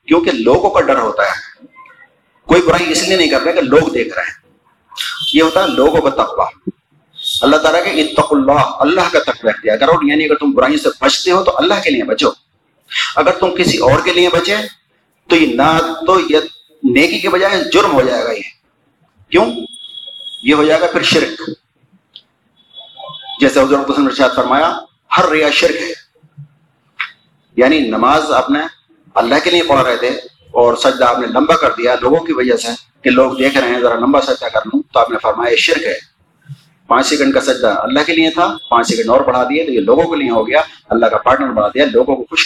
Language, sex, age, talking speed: Urdu, male, 50-69, 205 wpm